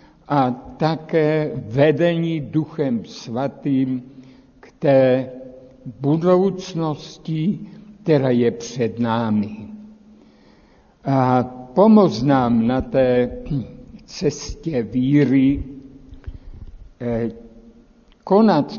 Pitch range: 125-165 Hz